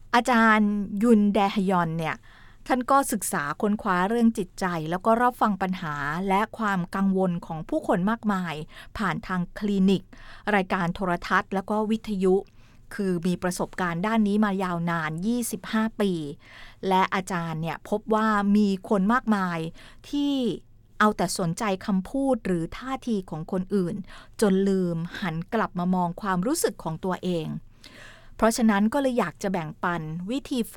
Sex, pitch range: female, 175-215 Hz